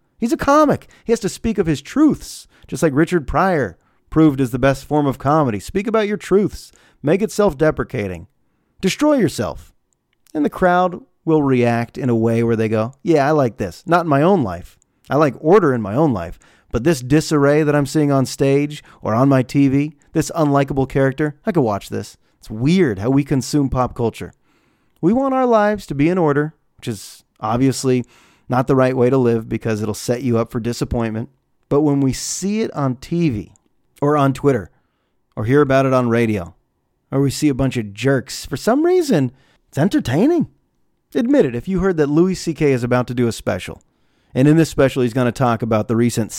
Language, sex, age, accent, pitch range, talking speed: English, male, 30-49, American, 120-155 Hz, 205 wpm